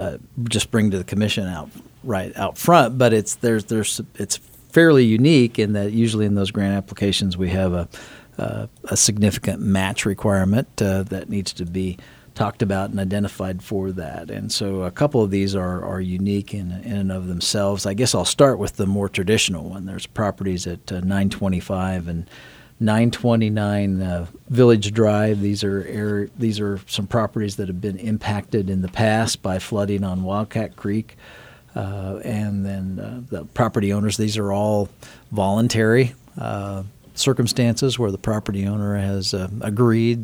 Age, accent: 40-59, American